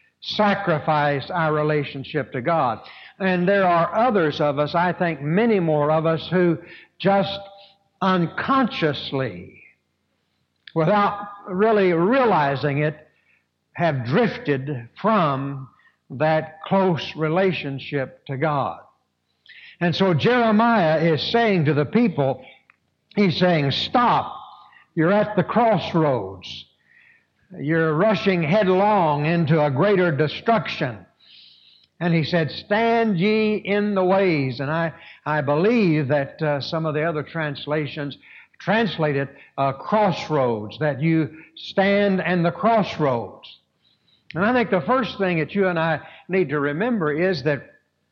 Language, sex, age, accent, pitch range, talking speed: English, male, 60-79, American, 150-195 Hz, 120 wpm